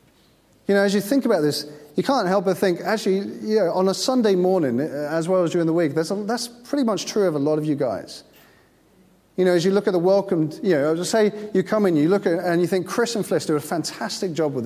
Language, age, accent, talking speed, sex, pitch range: English, 40-59, British, 265 wpm, male, 165-205 Hz